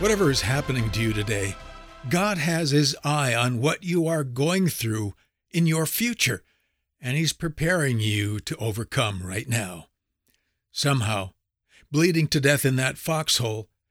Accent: American